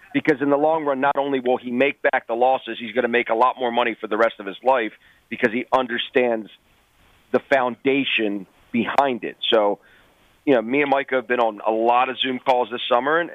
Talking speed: 230 wpm